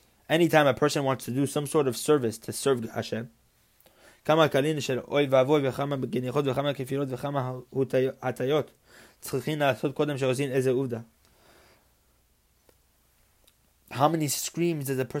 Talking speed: 85 wpm